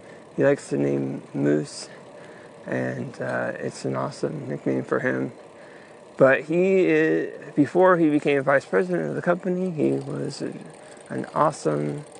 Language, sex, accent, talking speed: English, male, American, 140 wpm